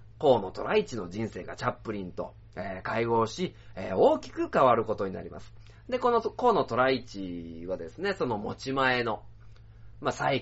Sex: male